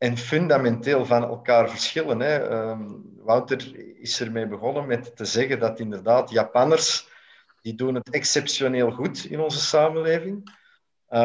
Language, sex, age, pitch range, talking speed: Dutch, male, 50-69, 115-150 Hz, 140 wpm